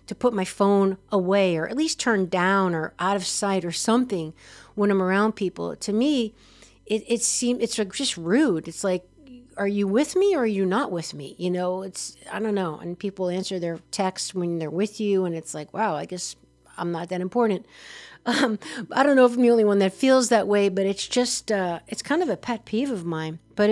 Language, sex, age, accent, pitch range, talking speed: English, female, 50-69, American, 180-225 Hz, 235 wpm